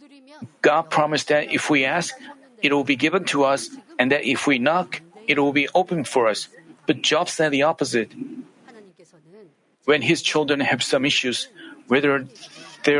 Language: Korean